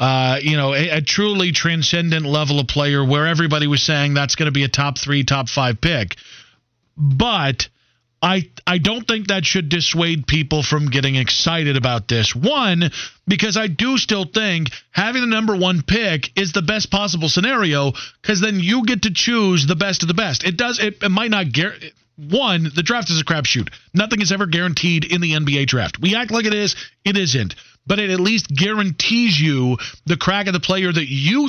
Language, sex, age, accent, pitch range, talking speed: English, male, 40-59, American, 150-200 Hz, 200 wpm